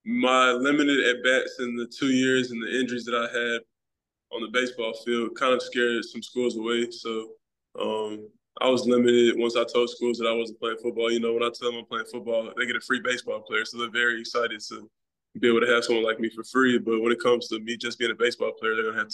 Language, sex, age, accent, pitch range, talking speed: English, male, 20-39, American, 115-125 Hz, 250 wpm